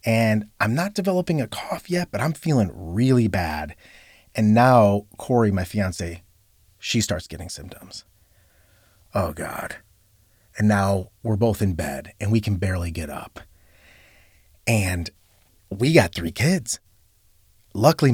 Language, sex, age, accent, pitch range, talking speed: English, male, 30-49, American, 95-130 Hz, 135 wpm